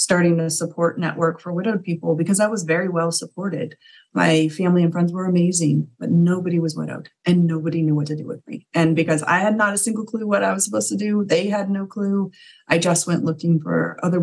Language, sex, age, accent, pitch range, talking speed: English, female, 30-49, American, 165-200 Hz, 230 wpm